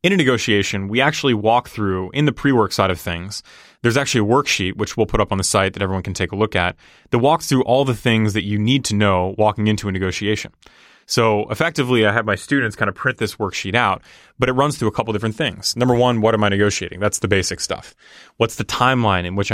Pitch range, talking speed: 100-115 Hz, 250 wpm